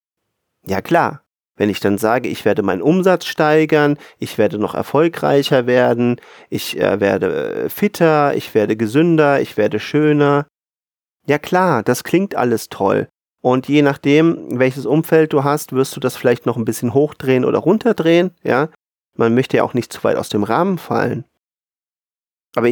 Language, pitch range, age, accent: German, 115-150 Hz, 40-59, German